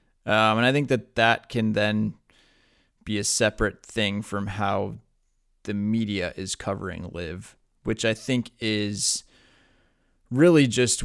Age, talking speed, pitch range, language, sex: 20-39, 135 wpm, 100-120 Hz, English, male